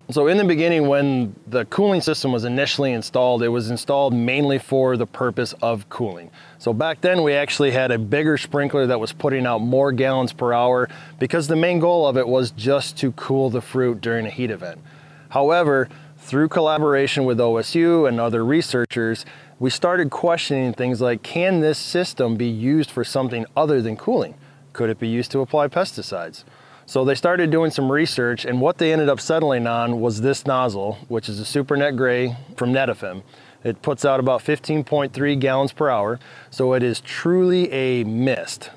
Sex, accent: male, American